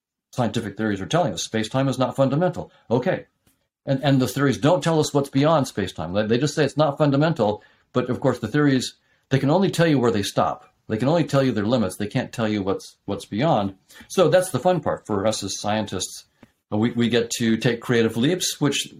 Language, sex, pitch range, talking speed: English, male, 115-140 Hz, 225 wpm